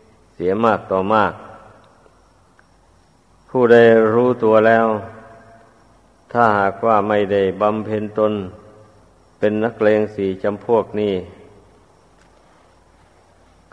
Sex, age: male, 50-69